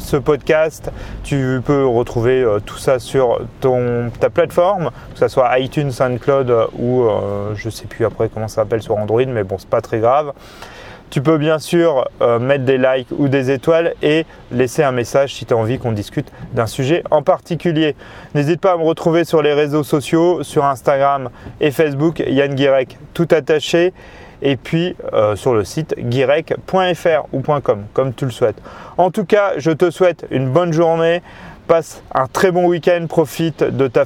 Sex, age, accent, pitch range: male, 30-49, French, 120-155 Hz